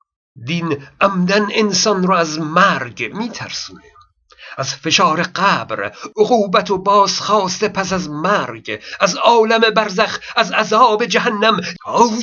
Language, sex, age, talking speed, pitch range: Persian, male, 50-69, 115 wpm, 170-240 Hz